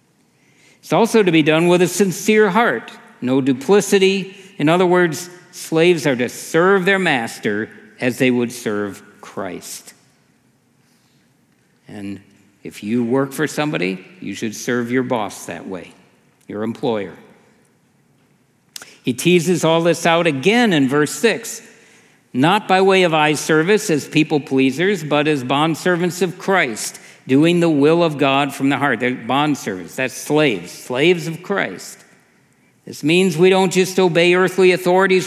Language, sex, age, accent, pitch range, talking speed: English, male, 60-79, American, 130-180 Hz, 150 wpm